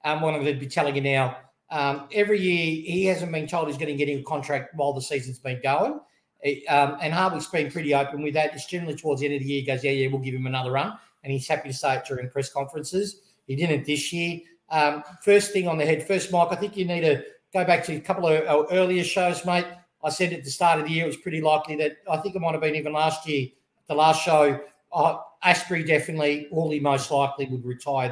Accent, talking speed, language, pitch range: Australian, 260 wpm, English, 145-185 Hz